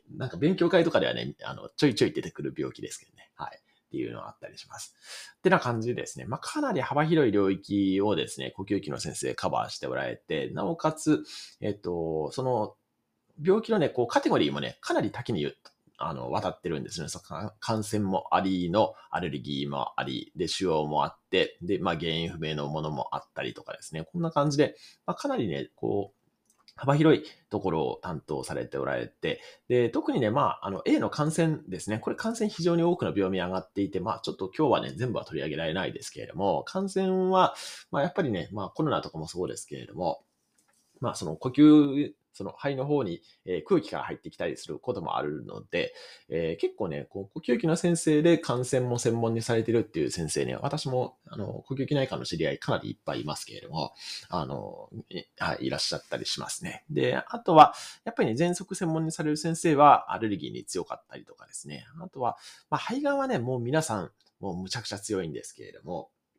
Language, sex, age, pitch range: Japanese, male, 30-49, 100-170 Hz